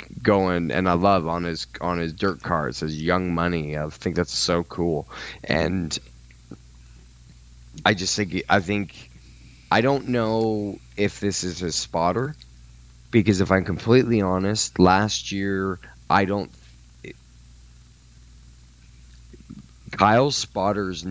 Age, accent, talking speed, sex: 20-39, American, 125 wpm, male